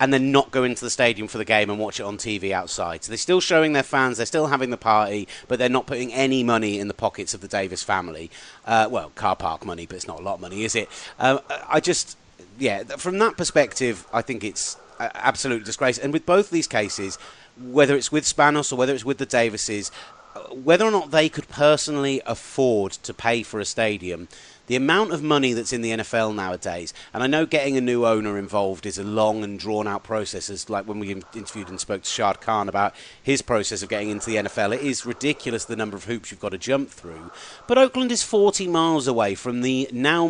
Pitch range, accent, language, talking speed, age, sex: 110-155 Hz, British, English, 230 wpm, 30-49, male